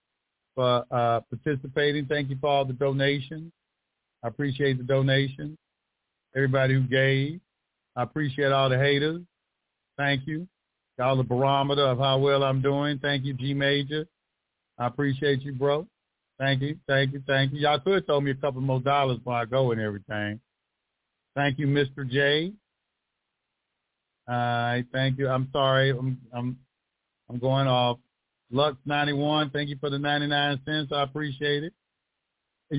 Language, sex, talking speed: English, male, 155 wpm